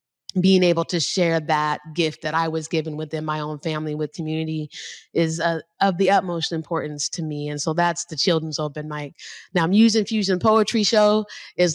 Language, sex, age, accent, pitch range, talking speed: English, female, 20-39, American, 160-180 Hz, 190 wpm